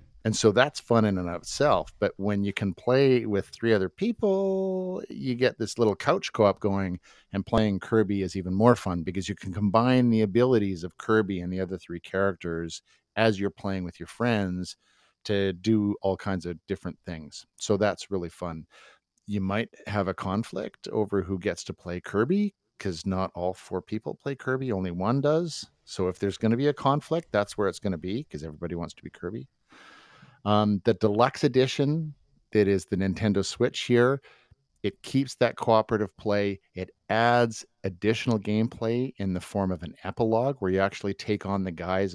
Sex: male